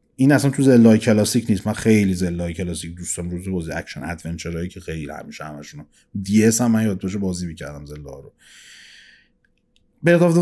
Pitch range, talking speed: 95-155 Hz, 185 wpm